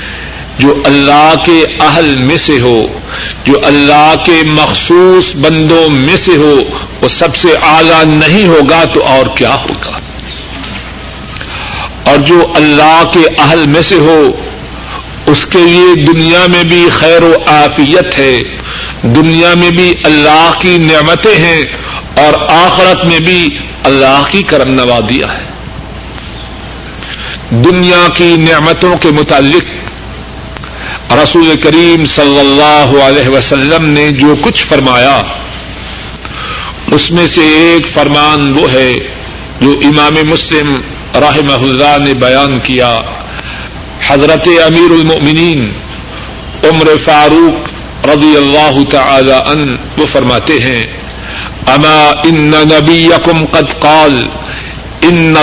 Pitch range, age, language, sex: 140-165 Hz, 50-69, Urdu, male